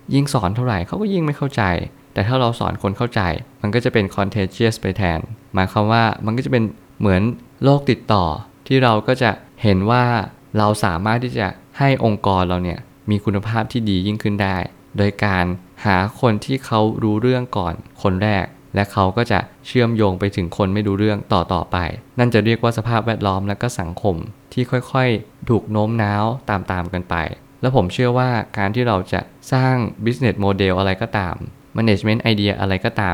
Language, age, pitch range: Thai, 20-39, 100-120 Hz